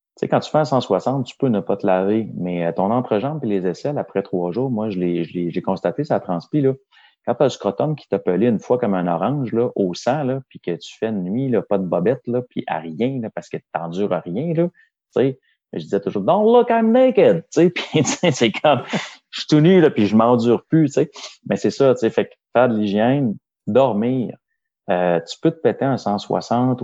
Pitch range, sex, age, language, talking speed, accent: 95-130 Hz, male, 30-49, French, 255 wpm, Canadian